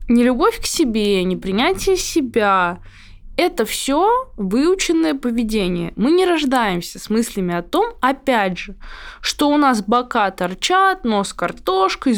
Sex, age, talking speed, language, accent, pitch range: female, 20-39, 135 wpm, Russian, native, 195-285 Hz